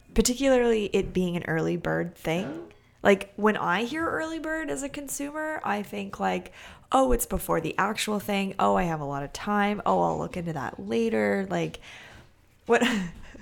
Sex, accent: female, American